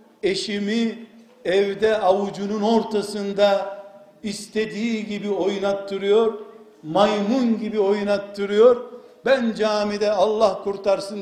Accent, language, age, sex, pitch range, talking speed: native, Turkish, 60-79, male, 190-240 Hz, 75 wpm